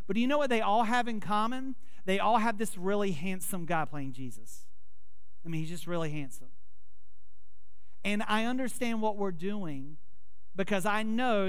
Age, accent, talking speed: 40-59, American, 180 wpm